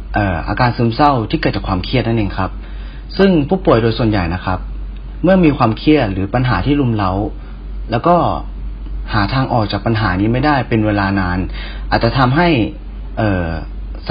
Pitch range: 100-135 Hz